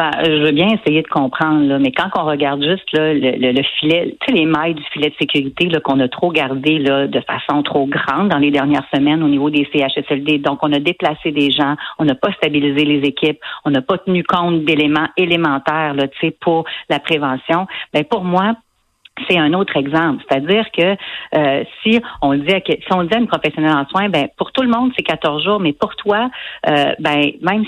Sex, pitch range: female, 150-190 Hz